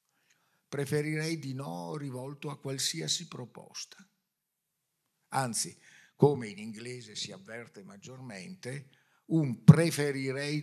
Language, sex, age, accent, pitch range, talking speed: Italian, male, 50-69, native, 125-165 Hz, 90 wpm